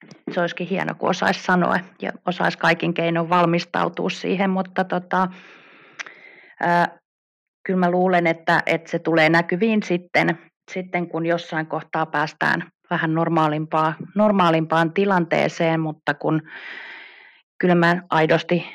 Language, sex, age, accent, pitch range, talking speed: Finnish, female, 30-49, native, 165-180 Hz, 120 wpm